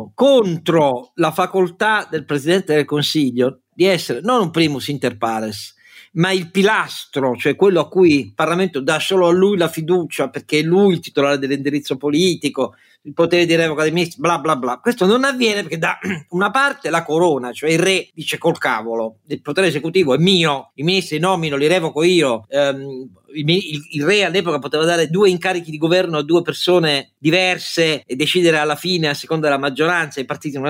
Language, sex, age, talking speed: Italian, male, 50-69, 190 wpm